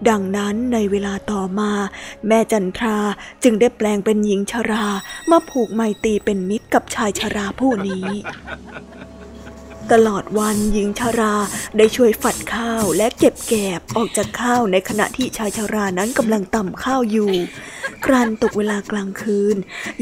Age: 20-39